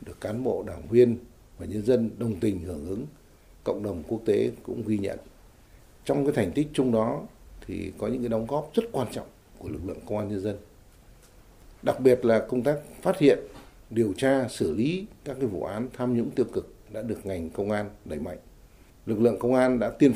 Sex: male